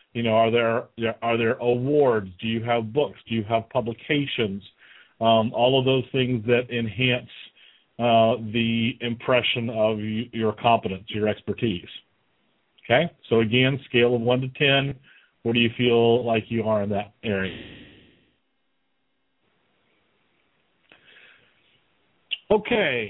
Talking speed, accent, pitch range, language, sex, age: 130 wpm, American, 115-155 Hz, English, male, 40-59